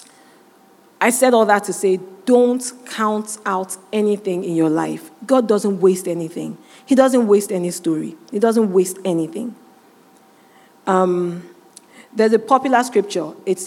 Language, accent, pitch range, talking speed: English, Nigerian, 185-240 Hz, 140 wpm